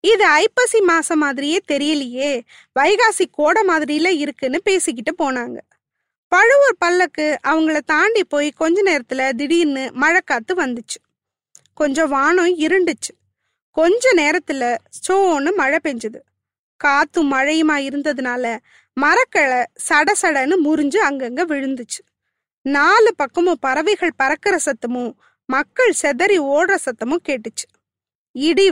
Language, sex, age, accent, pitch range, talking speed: Tamil, female, 20-39, native, 275-365 Hz, 100 wpm